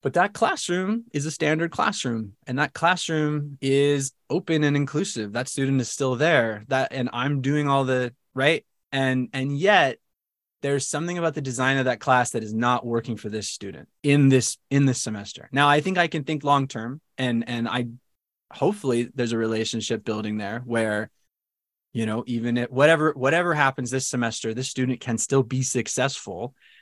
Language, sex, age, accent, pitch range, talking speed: English, male, 20-39, American, 115-140 Hz, 180 wpm